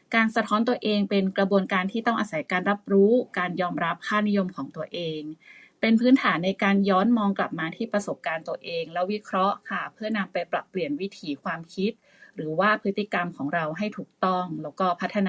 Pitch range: 175-215 Hz